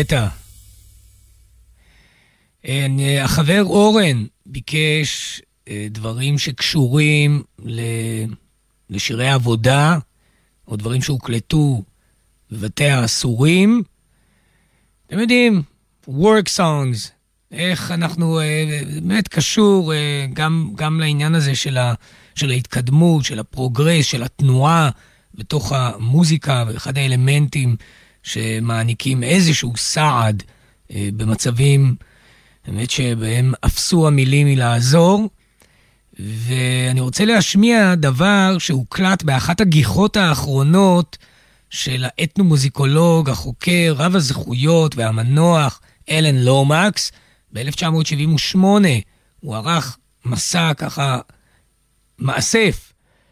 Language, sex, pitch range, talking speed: Hebrew, male, 120-165 Hz, 75 wpm